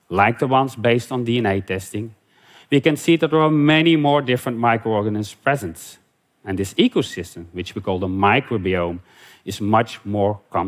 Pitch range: 100-140 Hz